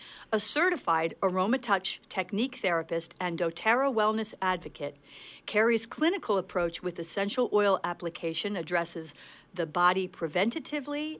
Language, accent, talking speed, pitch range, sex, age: English, American, 105 wpm, 175-235 Hz, female, 50-69